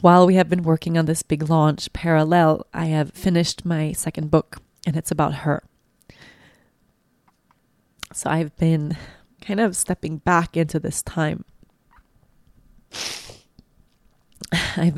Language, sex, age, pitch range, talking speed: English, female, 20-39, 155-180 Hz, 130 wpm